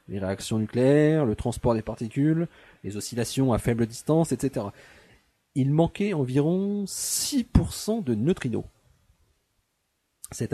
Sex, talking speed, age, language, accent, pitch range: male, 115 wpm, 40-59, French, French, 110-150 Hz